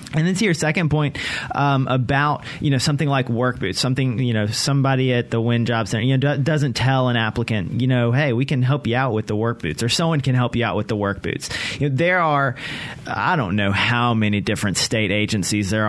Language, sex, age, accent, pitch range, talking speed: English, male, 30-49, American, 120-150 Hz, 245 wpm